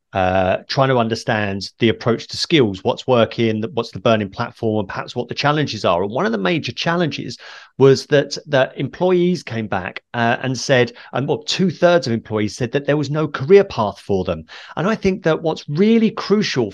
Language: English